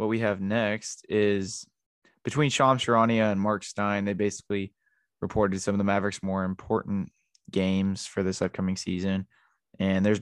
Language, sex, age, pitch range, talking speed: English, male, 20-39, 95-110 Hz, 160 wpm